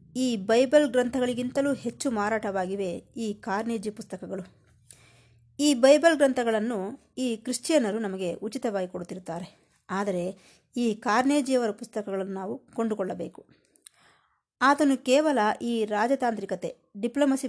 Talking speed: 95 wpm